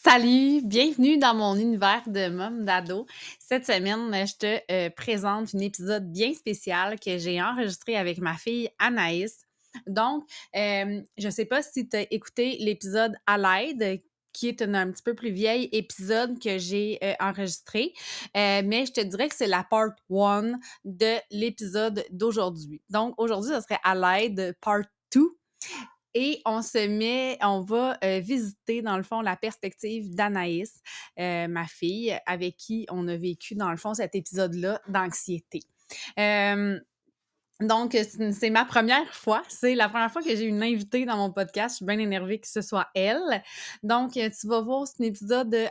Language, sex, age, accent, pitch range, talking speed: French, female, 20-39, Canadian, 195-230 Hz, 170 wpm